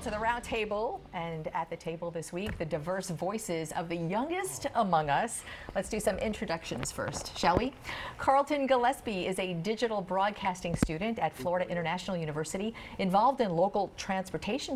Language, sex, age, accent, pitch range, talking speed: English, female, 50-69, American, 170-235 Hz, 165 wpm